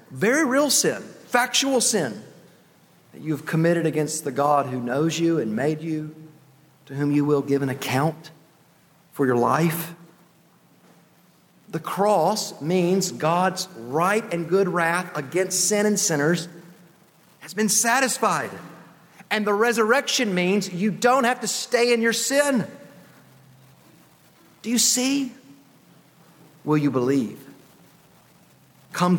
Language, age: English, 40-59